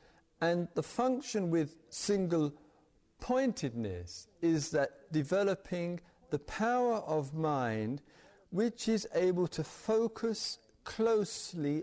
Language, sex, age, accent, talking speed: English, male, 50-69, British, 90 wpm